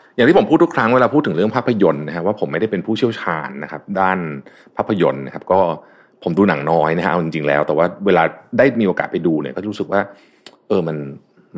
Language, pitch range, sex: Thai, 85-145 Hz, male